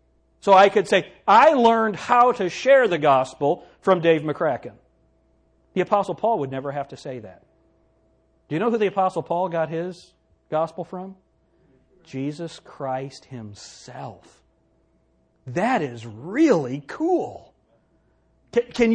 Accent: American